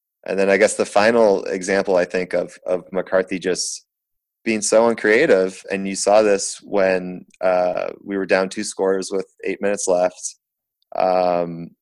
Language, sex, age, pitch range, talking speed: English, male, 20-39, 90-105 Hz, 160 wpm